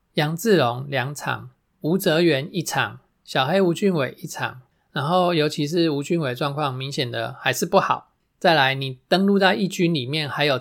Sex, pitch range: male, 135-185 Hz